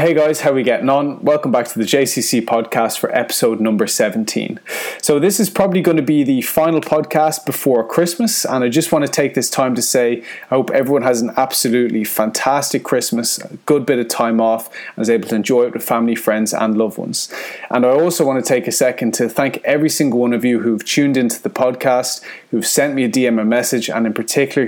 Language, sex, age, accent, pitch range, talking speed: English, male, 20-39, Irish, 120-155 Hz, 230 wpm